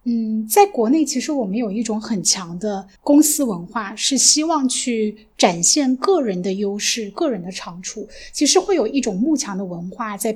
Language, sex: Chinese, female